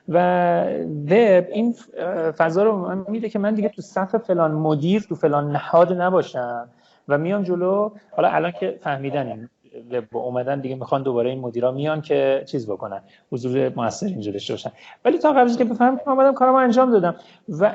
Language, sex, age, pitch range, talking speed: Persian, male, 30-49, 135-205 Hz, 170 wpm